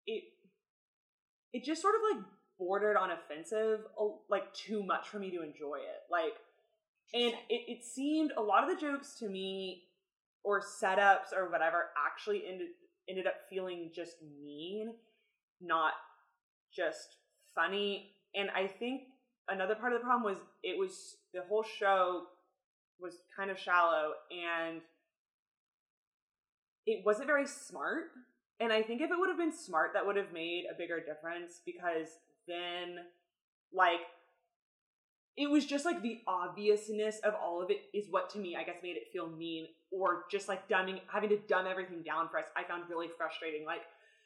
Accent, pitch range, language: American, 175-235 Hz, English